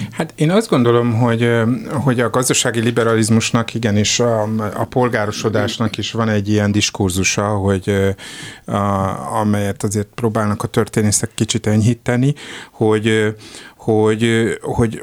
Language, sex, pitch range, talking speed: Hungarian, male, 100-125 Hz, 125 wpm